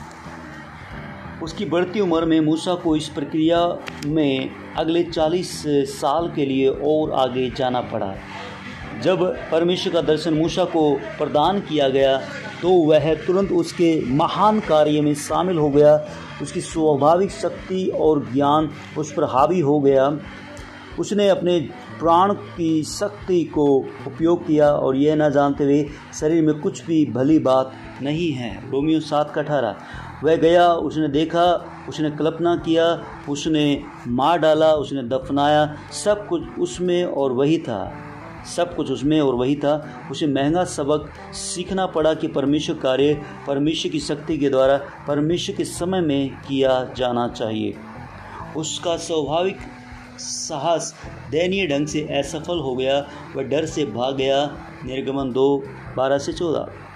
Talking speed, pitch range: 140 wpm, 140-170 Hz